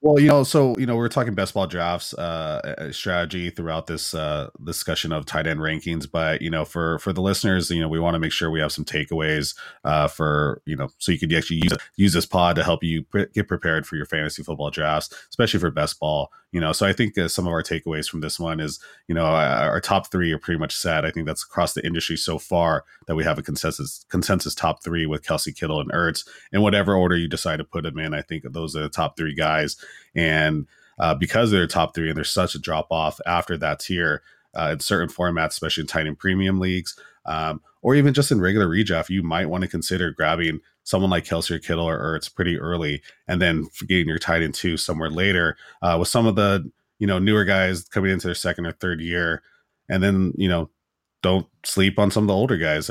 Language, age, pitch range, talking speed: English, 30-49, 80-95 Hz, 240 wpm